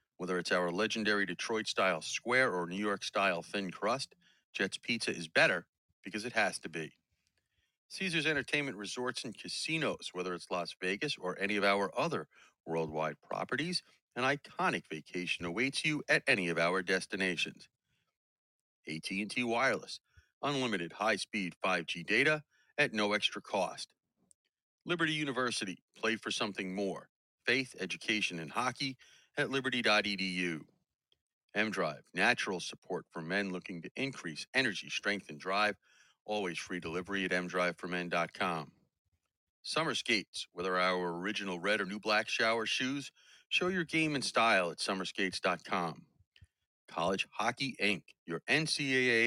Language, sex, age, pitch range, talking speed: English, male, 40-59, 90-125 Hz, 130 wpm